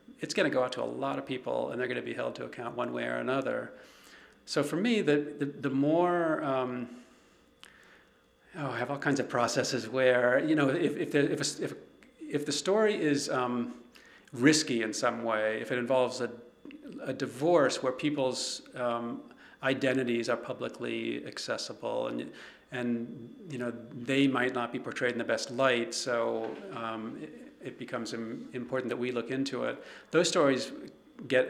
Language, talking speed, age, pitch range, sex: English, 170 wpm, 40-59, 120-140 Hz, male